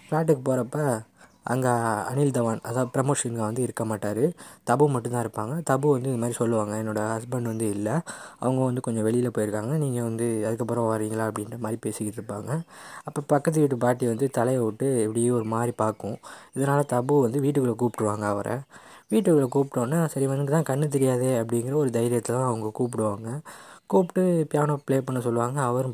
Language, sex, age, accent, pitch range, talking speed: Tamil, female, 20-39, native, 115-140 Hz, 160 wpm